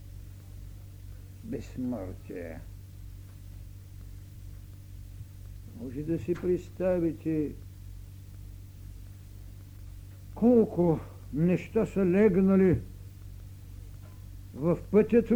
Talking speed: 45 wpm